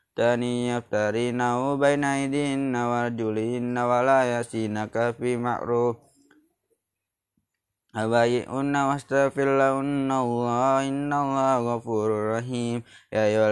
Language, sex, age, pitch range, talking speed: Indonesian, male, 20-39, 115-135 Hz, 95 wpm